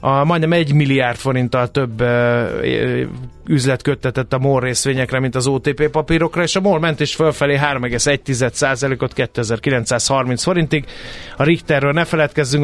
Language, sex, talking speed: Hungarian, male, 140 wpm